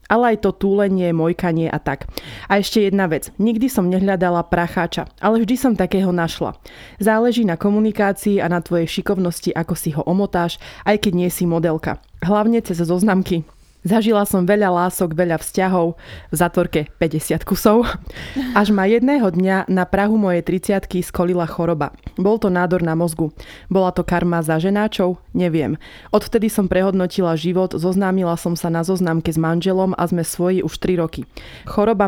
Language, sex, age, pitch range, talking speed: Slovak, female, 20-39, 165-195 Hz, 165 wpm